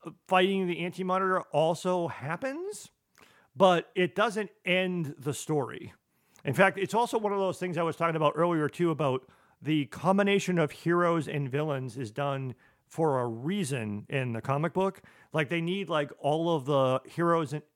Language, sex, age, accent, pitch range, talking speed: English, male, 40-59, American, 135-175 Hz, 170 wpm